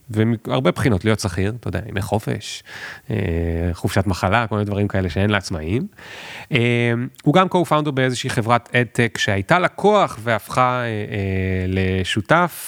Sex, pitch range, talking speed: male, 100-135 Hz, 140 wpm